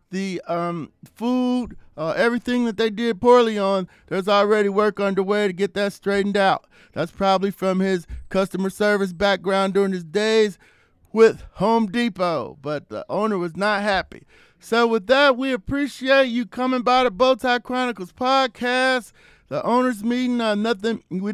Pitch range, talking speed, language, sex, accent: 195-245 Hz, 155 wpm, English, male, American